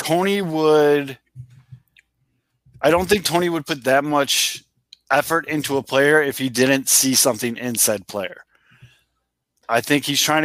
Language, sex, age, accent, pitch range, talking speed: English, male, 20-39, American, 120-145 Hz, 155 wpm